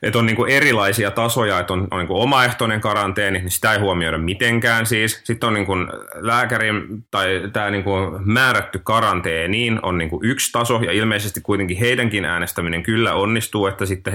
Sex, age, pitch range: male, 30-49, 85-110 Hz